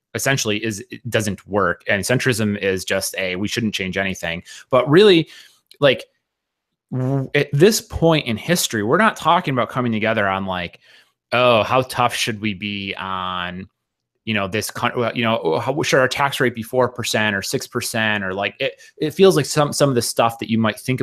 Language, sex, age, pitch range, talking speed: English, male, 30-49, 105-145 Hz, 205 wpm